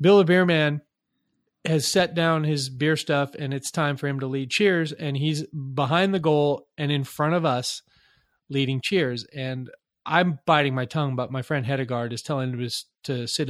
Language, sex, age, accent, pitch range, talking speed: English, male, 30-49, American, 135-160 Hz, 200 wpm